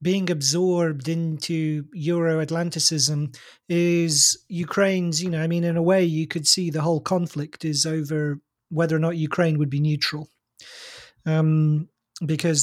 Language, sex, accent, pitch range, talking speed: English, male, British, 155-175 Hz, 145 wpm